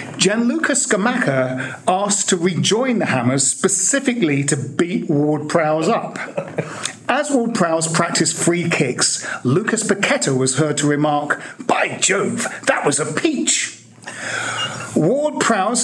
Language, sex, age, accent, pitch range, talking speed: English, male, 50-69, British, 145-210 Hz, 130 wpm